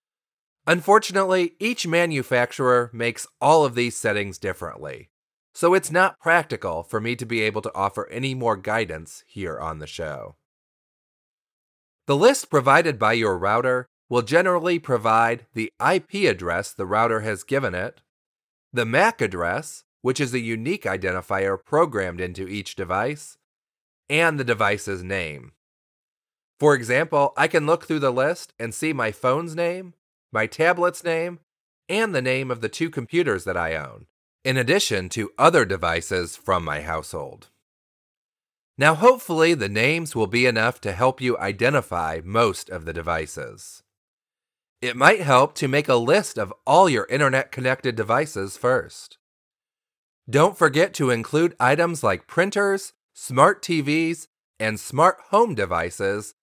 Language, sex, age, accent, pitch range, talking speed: English, male, 30-49, American, 110-165 Hz, 145 wpm